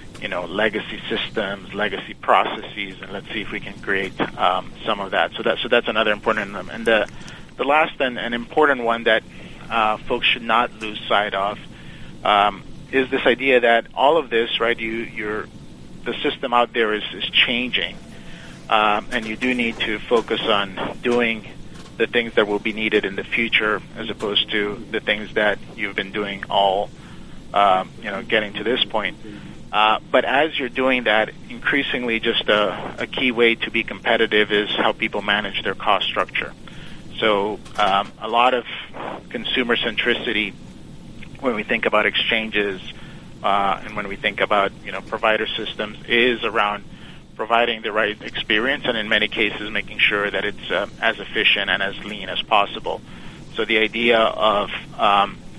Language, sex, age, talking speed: English, male, 40-59, 180 wpm